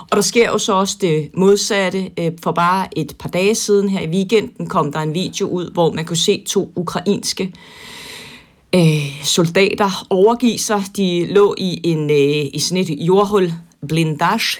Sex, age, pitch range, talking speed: female, 30-49, 160-205 Hz, 165 wpm